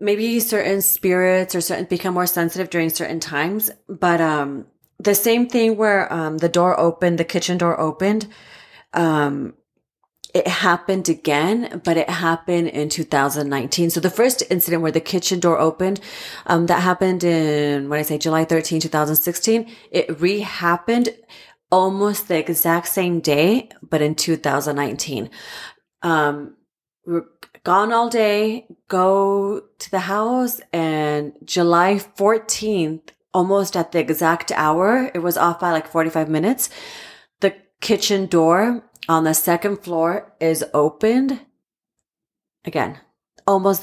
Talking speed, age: 140 wpm, 30-49